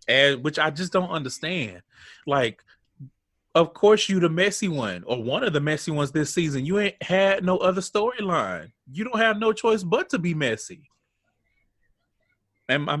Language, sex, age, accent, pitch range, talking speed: English, male, 30-49, American, 105-160 Hz, 175 wpm